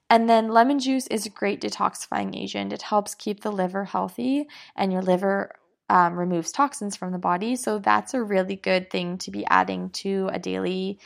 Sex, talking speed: female, 195 wpm